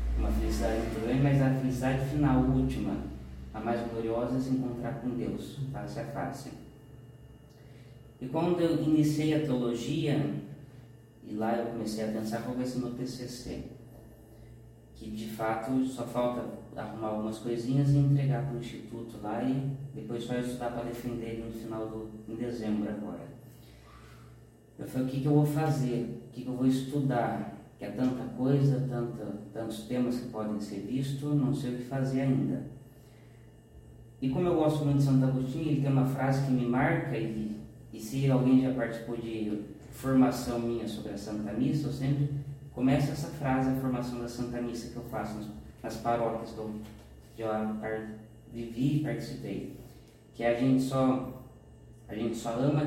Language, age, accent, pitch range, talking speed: Portuguese, 20-39, Brazilian, 115-135 Hz, 170 wpm